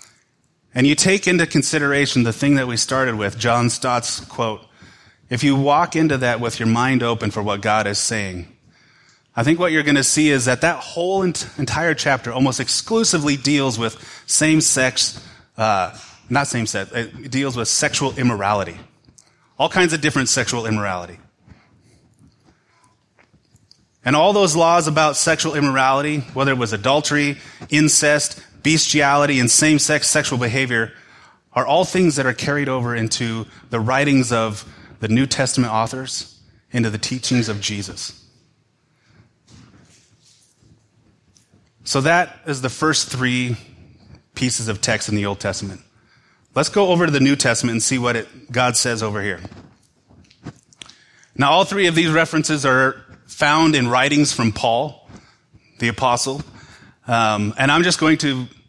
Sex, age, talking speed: male, 30-49, 150 wpm